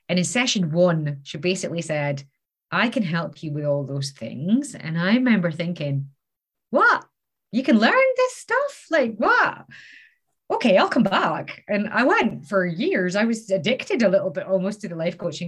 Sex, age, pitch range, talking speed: female, 30-49, 150-195 Hz, 180 wpm